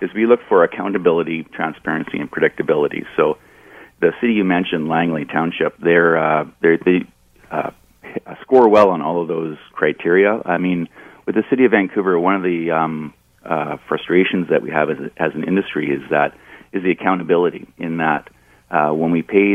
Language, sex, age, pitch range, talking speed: English, male, 40-59, 75-85 Hz, 185 wpm